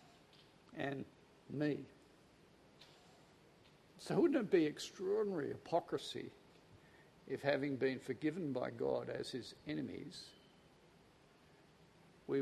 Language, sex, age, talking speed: English, male, 60-79, 85 wpm